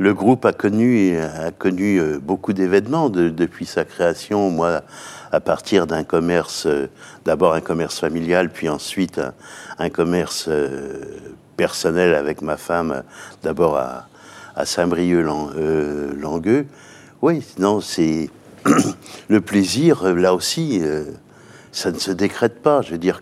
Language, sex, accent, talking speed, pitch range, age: French, male, French, 125 wpm, 85-105 Hz, 60-79